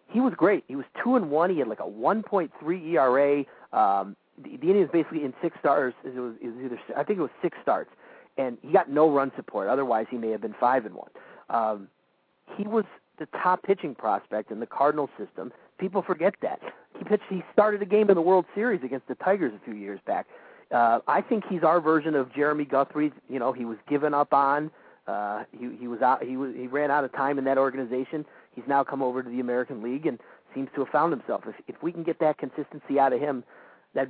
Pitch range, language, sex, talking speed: 125-165 Hz, English, male, 235 wpm